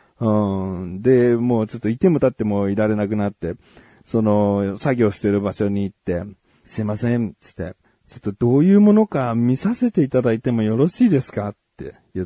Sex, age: male, 40-59